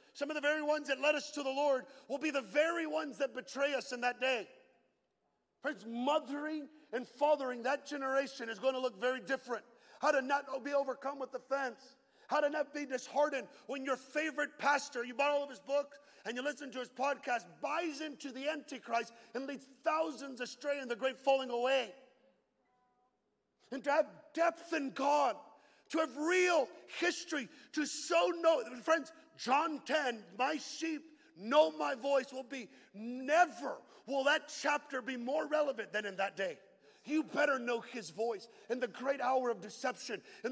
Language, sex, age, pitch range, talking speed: English, male, 50-69, 245-295 Hz, 180 wpm